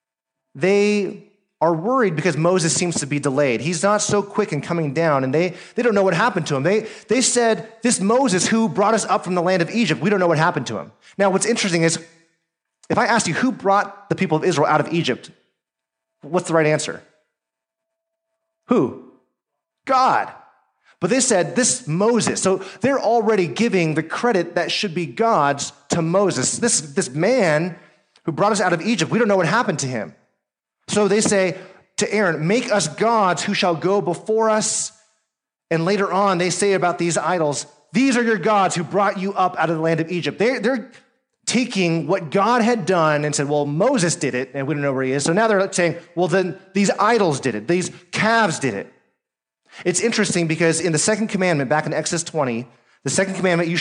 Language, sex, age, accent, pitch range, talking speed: English, male, 30-49, American, 160-210 Hz, 205 wpm